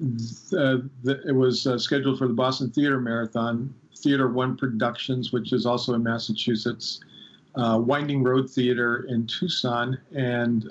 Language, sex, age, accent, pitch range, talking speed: English, male, 50-69, American, 115-140 Hz, 145 wpm